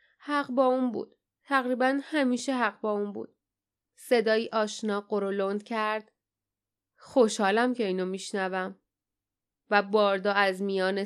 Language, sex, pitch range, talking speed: Persian, female, 195-240 Hz, 120 wpm